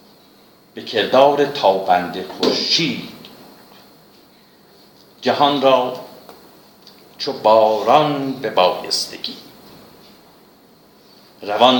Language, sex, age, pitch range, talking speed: Persian, male, 60-79, 95-140 Hz, 55 wpm